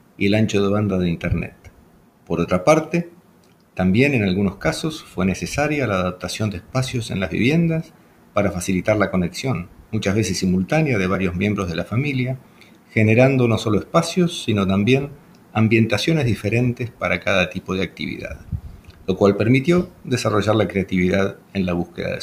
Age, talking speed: 50-69, 160 wpm